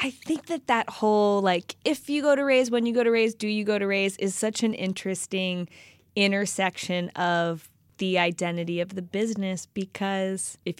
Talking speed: 190 wpm